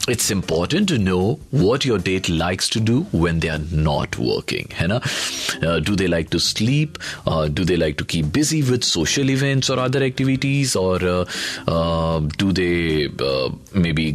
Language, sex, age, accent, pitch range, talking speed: Hindi, male, 40-59, native, 90-140 Hz, 185 wpm